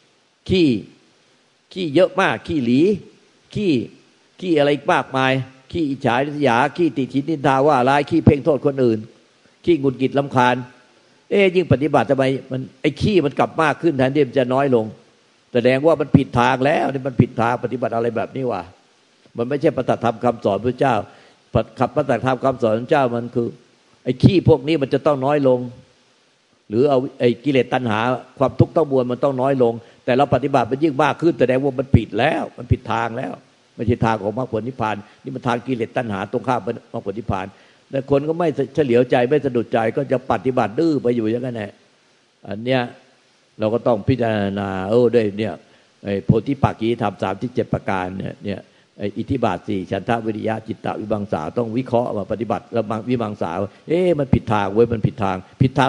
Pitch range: 115-135 Hz